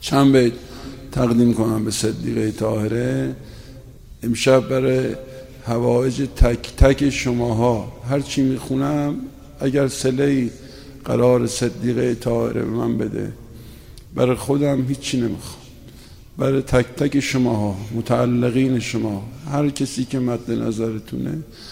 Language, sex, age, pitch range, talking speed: Persian, male, 50-69, 125-155 Hz, 110 wpm